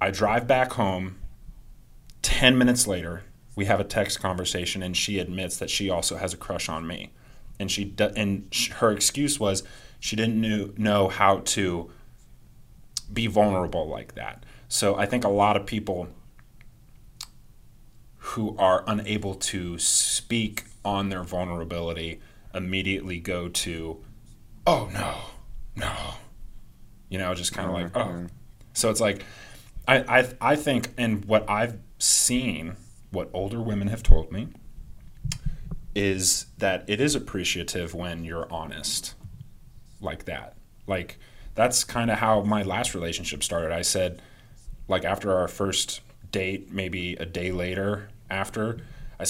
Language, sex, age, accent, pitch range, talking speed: English, male, 30-49, American, 90-110 Hz, 140 wpm